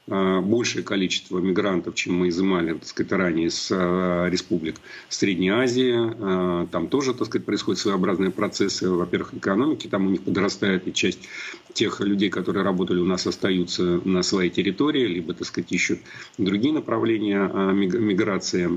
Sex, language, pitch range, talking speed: male, Russian, 90-100 Hz, 140 wpm